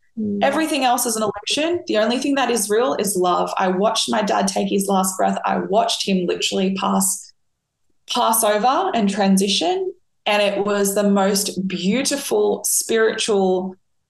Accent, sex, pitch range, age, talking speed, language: Australian, female, 180-210 Hz, 20-39, 155 wpm, English